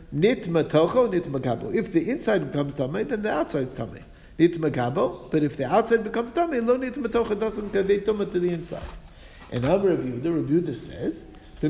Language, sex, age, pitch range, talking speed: English, male, 50-69, 170-235 Hz, 180 wpm